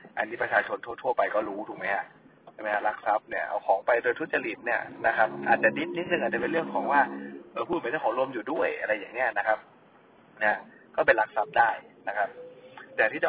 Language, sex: Thai, male